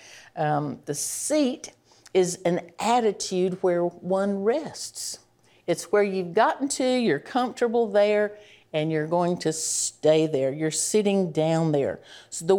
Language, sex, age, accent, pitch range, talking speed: English, female, 50-69, American, 155-195 Hz, 140 wpm